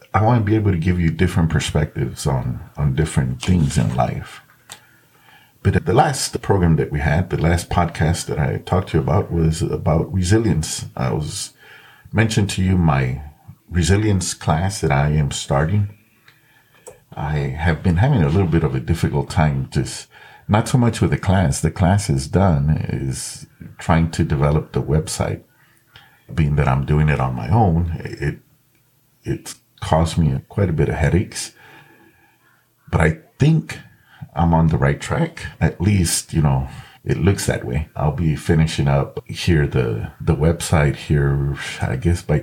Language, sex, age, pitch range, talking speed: English, male, 50-69, 75-90 Hz, 175 wpm